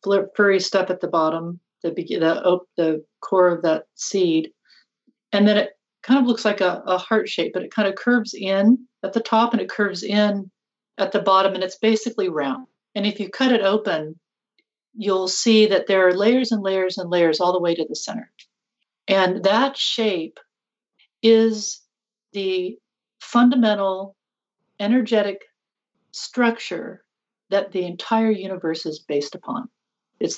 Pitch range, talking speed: 175-225 Hz, 160 wpm